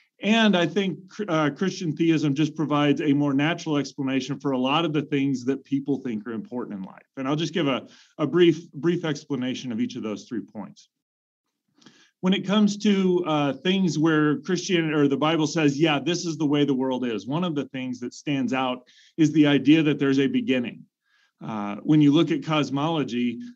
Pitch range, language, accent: 130-155 Hz, English, American